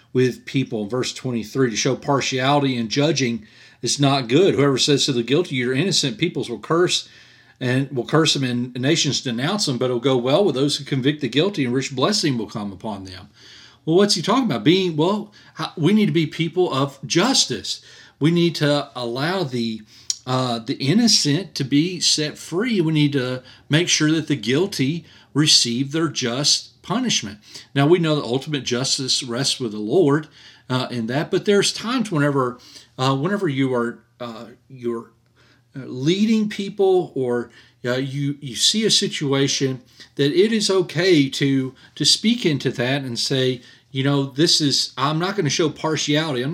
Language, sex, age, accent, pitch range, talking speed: English, male, 40-59, American, 125-160 Hz, 180 wpm